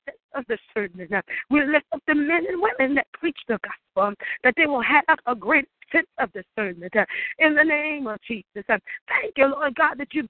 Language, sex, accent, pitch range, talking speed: English, female, American, 225-310 Hz, 200 wpm